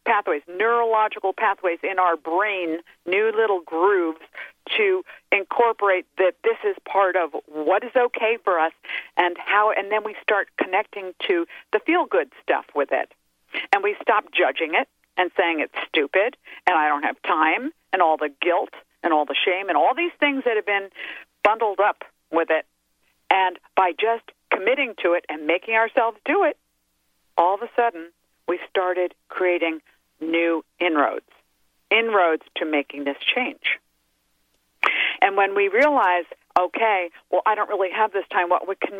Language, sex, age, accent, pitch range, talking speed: English, female, 50-69, American, 160-220 Hz, 165 wpm